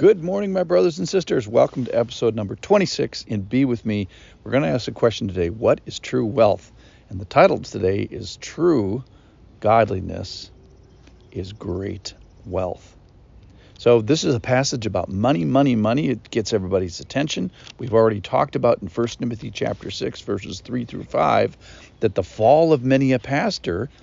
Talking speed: 170 wpm